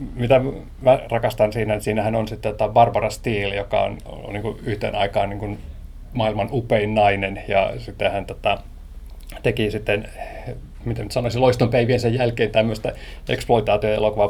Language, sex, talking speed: Finnish, male, 145 wpm